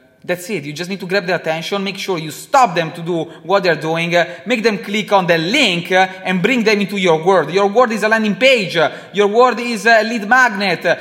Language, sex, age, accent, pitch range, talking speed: English, male, 20-39, Italian, 180-220 Hz, 235 wpm